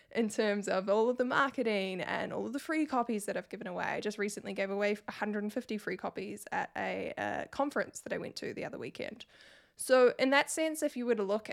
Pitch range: 200-245 Hz